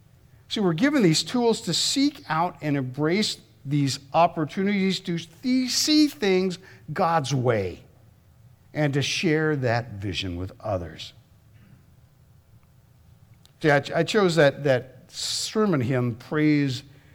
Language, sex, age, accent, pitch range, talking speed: English, male, 60-79, American, 115-160 Hz, 110 wpm